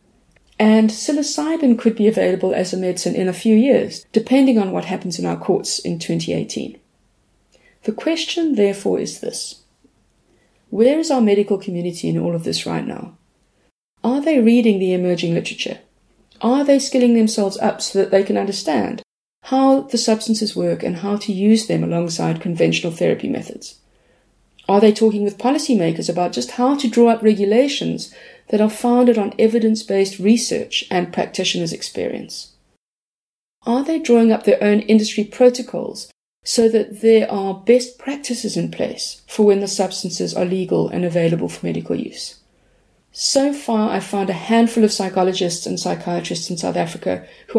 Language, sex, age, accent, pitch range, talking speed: English, female, 30-49, British, 190-240 Hz, 160 wpm